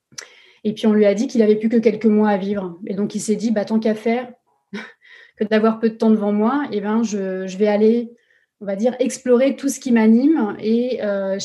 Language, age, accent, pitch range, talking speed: French, 30-49, French, 205-240 Hz, 235 wpm